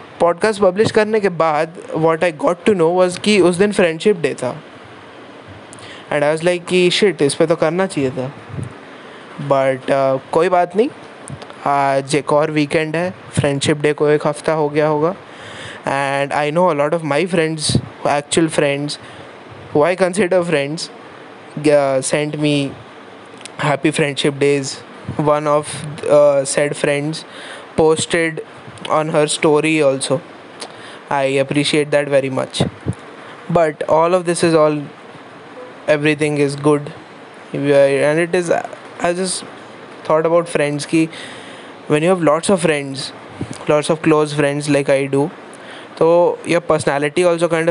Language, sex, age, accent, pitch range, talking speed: Hindi, male, 20-39, native, 140-165 Hz, 145 wpm